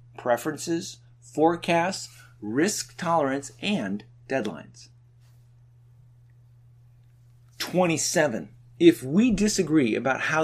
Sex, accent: male, American